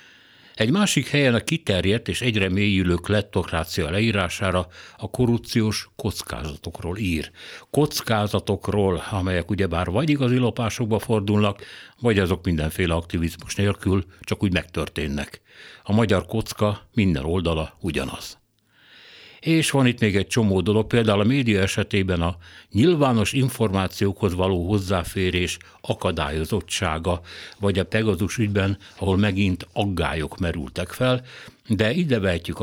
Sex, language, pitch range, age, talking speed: male, Hungarian, 90-110 Hz, 60-79, 115 wpm